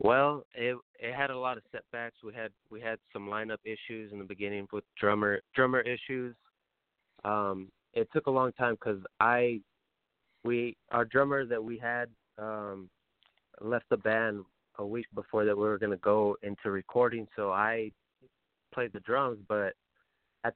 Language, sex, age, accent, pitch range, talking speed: English, male, 20-39, American, 105-125 Hz, 165 wpm